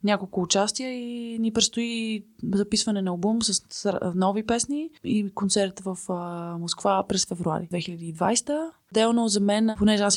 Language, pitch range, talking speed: Bulgarian, 175-210 Hz, 135 wpm